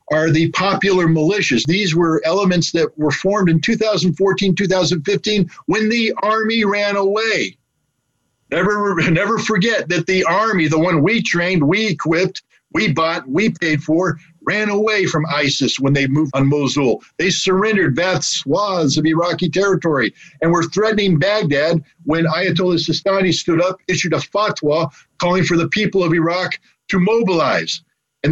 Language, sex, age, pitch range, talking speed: English, male, 50-69, 160-195 Hz, 155 wpm